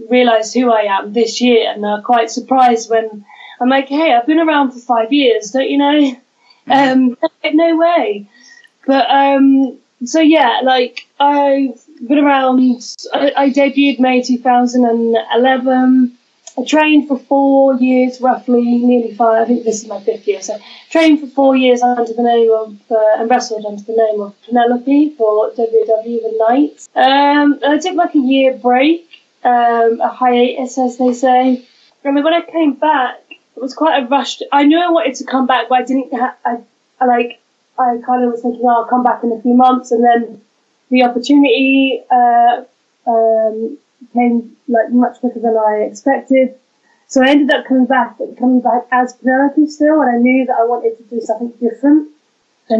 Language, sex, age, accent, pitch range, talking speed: English, female, 10-29, British, 230-275 Hz, 185 wpm